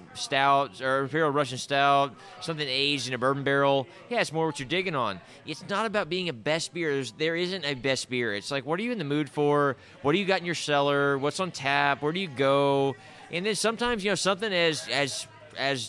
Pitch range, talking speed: 130-165 Hz, 235 wpm